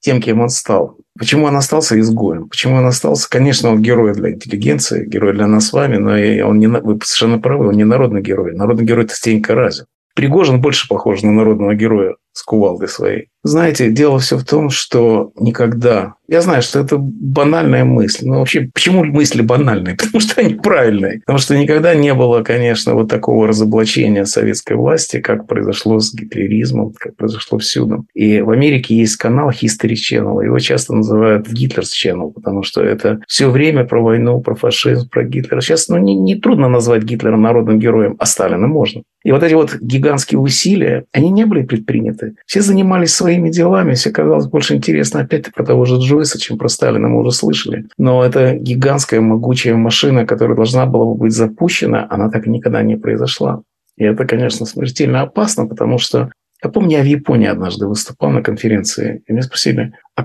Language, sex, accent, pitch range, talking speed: Russian, male, native, 110-140 Hz, 185 wpm